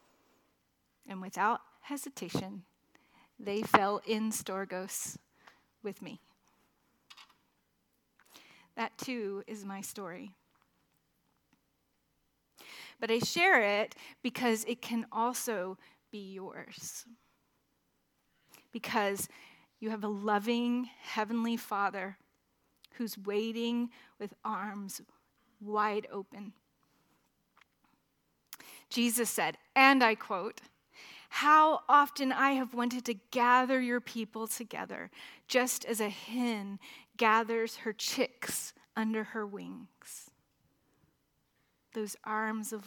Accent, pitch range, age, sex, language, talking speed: American, 210-245 Hz, 30-49, female, English, 90 wpm